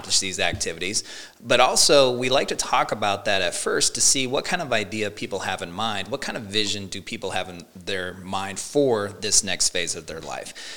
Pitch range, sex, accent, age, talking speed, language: 100-120 Hz, male, American, 30-49, 215 wpm, English